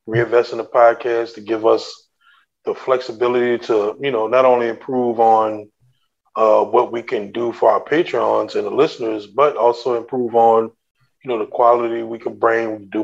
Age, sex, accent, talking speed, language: 20-39, male, American, 180 wpm, English